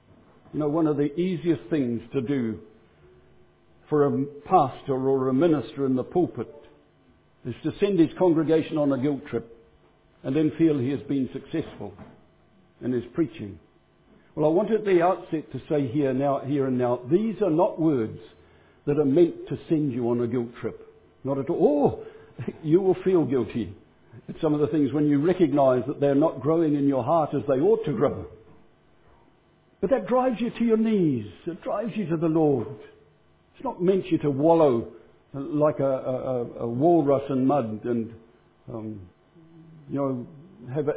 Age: 60-79